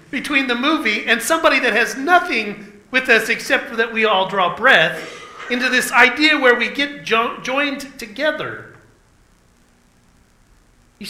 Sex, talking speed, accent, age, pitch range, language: male, 140 wpm, American, 40-59, 150-235 Hz, English